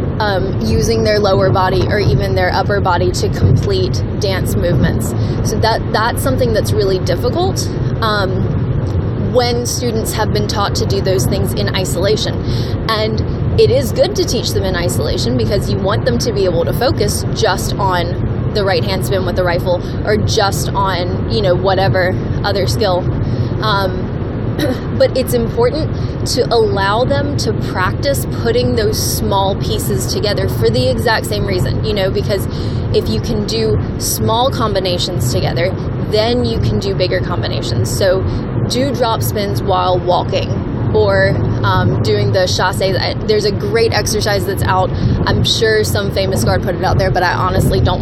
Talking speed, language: 165 wpm, English